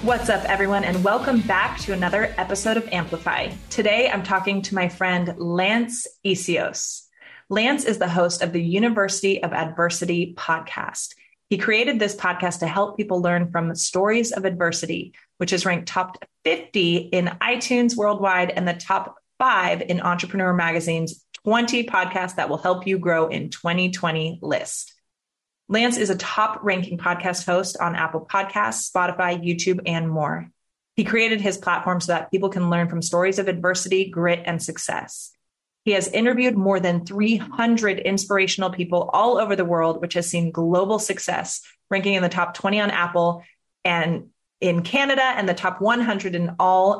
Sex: female